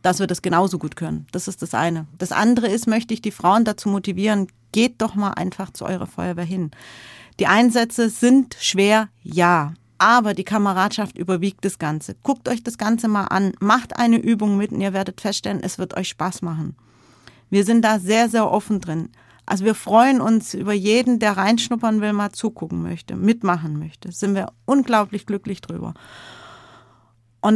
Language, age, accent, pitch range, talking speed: German, 40-59, German, 180-225 Hz, 185 wpm